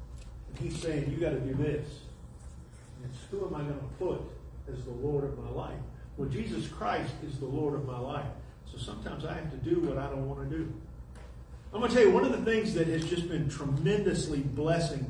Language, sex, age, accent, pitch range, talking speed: English, male, 50-69, American, 125-200 Hz, 225 wpm